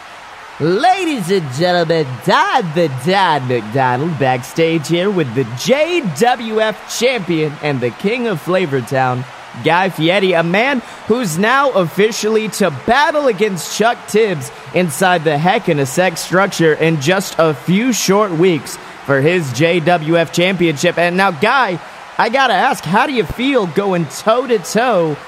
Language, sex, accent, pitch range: English, male, American, 160-210 Hz